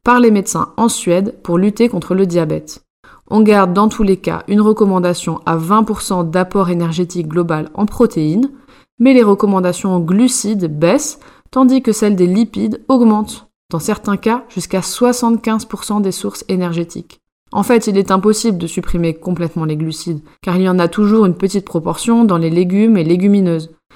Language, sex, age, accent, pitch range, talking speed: French, female, 20-39, French, 175-225 Hz, 175 wpm